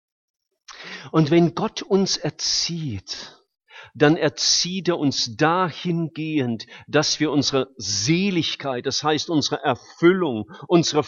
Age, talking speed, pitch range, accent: 50-69, 105 wpm, 115-165 Hz, German